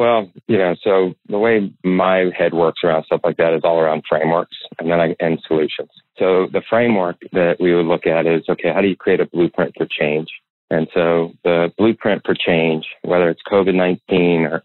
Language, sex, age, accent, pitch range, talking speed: English, male, 30-49, American, 85-90 Hz, 200 wpm